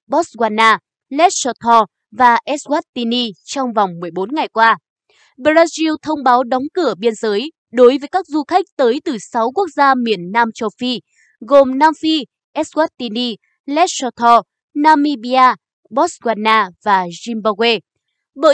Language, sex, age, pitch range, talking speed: Vietnamese, female, 20-39, 230-305 Hz, 130 wpm